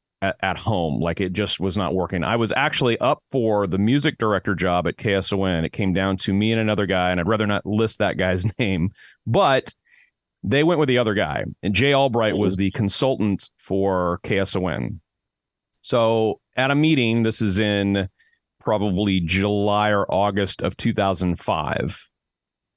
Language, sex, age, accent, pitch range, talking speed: English, male, 30-49, American, 95-110 Hz, 165 wpm